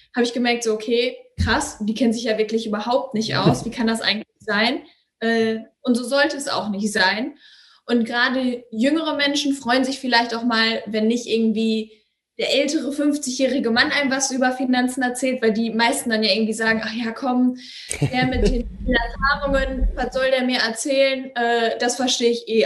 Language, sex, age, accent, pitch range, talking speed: German, female, 10-29, German, 225-270 Hz, 190 wpm